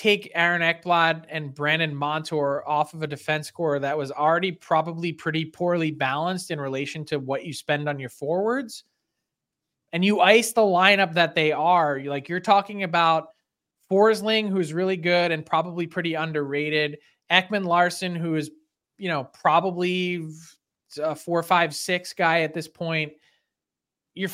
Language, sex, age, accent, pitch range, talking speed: English, male, 20-39, American, 155-190 Hz, 155 wpm